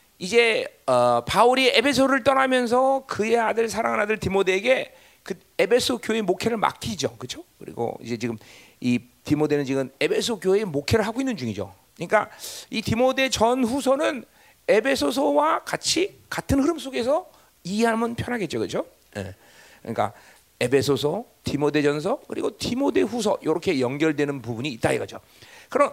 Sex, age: male, 40-59